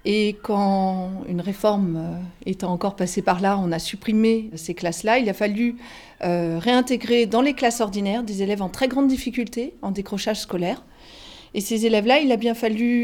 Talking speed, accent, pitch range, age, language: 175 wpm, French, 200-255 Hz, 40-59, French